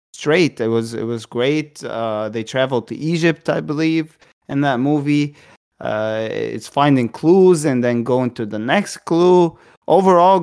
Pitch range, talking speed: 120-155 Hz, 160 wpm